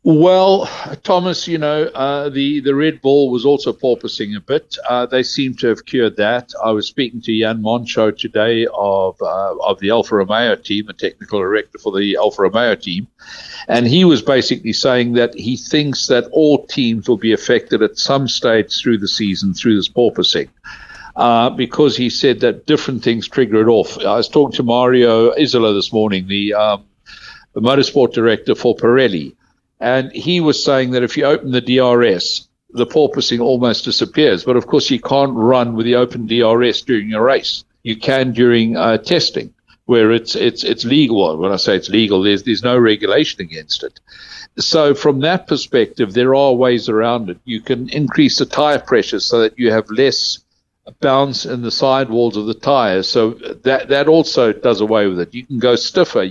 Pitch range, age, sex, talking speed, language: 115-140 Hz, 60-79, male, 190 wpm, English